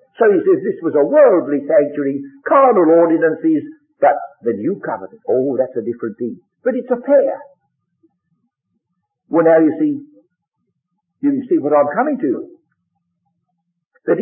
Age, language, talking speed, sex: 60-79, English, 145 wpm, male